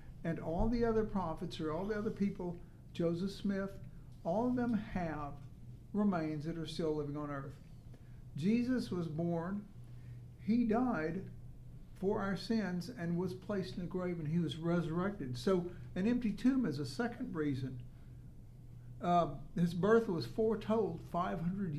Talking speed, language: 150 wpm, English